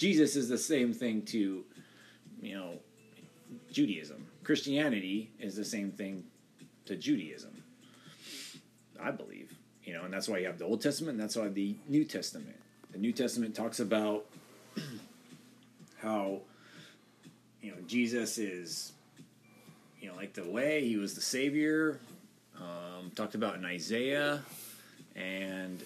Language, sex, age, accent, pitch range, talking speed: English, male, 30-49, American, 100-135 Hz, 135 wpm